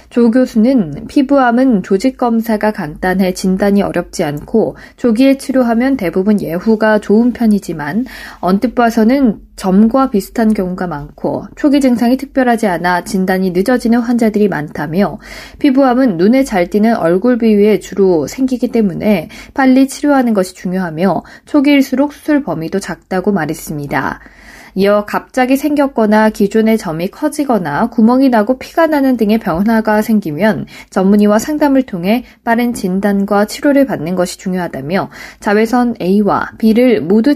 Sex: female